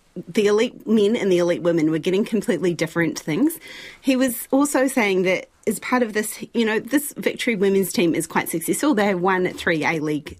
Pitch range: 175-245 Hz